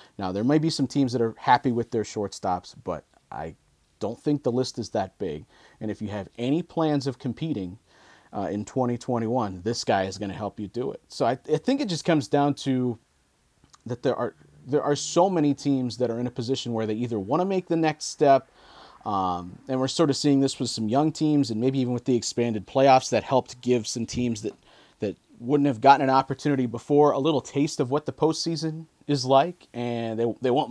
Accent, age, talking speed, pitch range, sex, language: American, 30-49, 230 wpm, 120-155 Hz, male, English